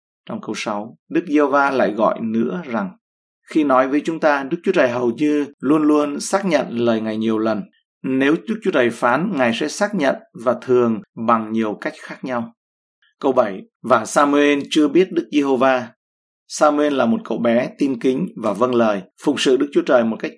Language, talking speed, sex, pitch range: Vietnamese, 205 wpm, male, 115-150 Hz